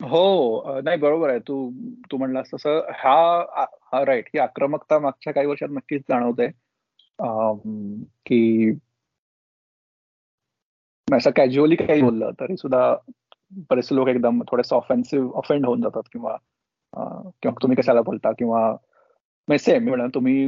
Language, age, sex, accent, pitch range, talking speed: Marathi, 30-49, male, native, 120-145 Hz, 110 wpm